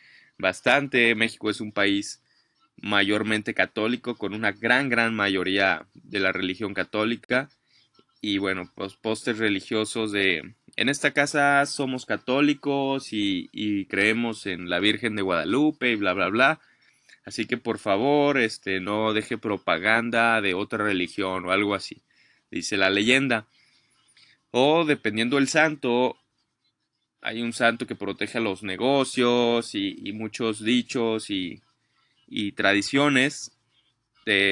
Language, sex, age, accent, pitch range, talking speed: English, male, 20-39, Mexican, 105-130 Hz, 130 wpm